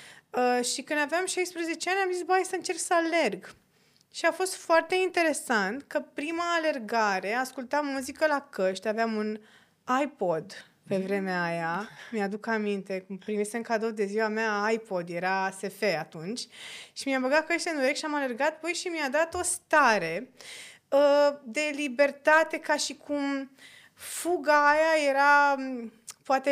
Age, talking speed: 20-39, 155 wpm